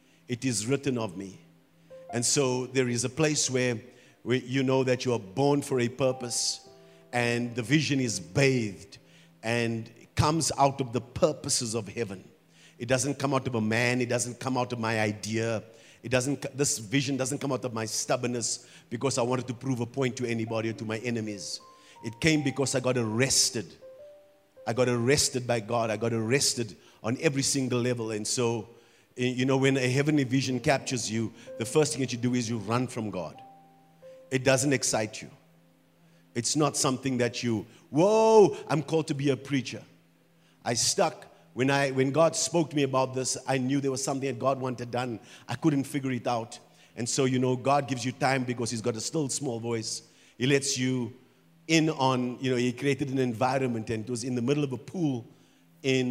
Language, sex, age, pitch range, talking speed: English, male, 50-69, 120-140 Hz, 200 wpm